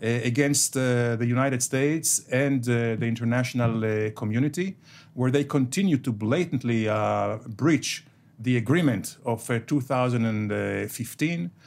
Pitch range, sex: 120-150 Hz, male